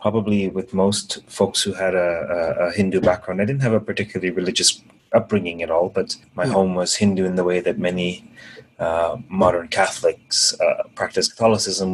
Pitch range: 95-115 Hz